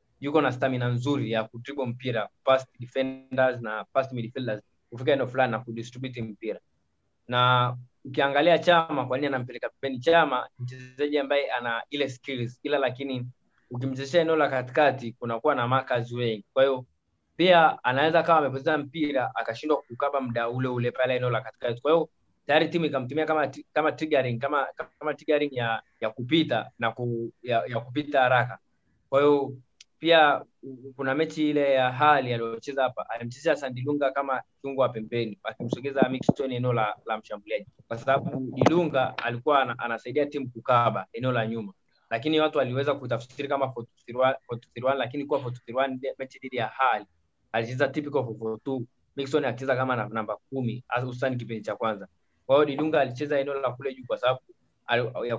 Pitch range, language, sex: 120-140 Hz, Swahili, male